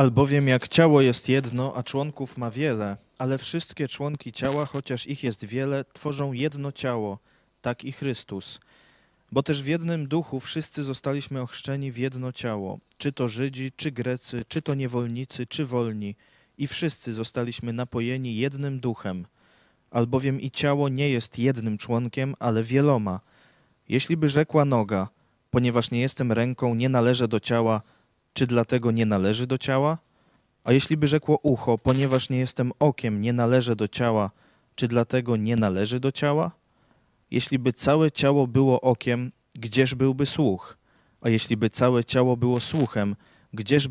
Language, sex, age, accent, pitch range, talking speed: Polish, male, 20-39, native, 120-140 Hz, 150 wpm